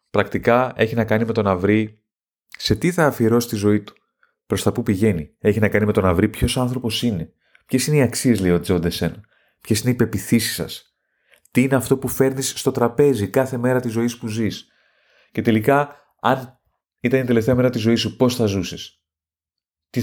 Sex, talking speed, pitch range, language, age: male, 205 wpm, 100-125 Hz, Greek, 30-49